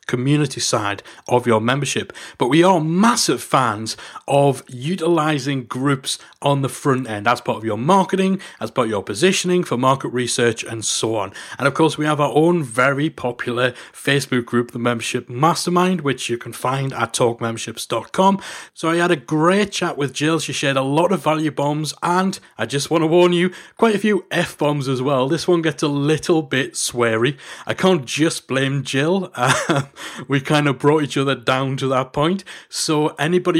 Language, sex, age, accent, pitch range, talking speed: English, male, 30-49, British, 125-170 Hz, 190 wpm